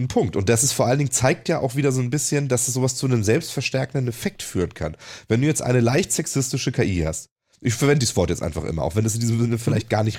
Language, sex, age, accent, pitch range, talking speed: German, male, 30-49, German, 105-135 Hz, 275 wpm